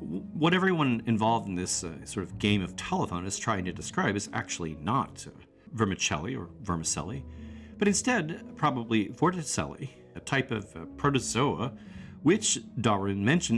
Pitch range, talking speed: 90-130 Hz, 150 wpm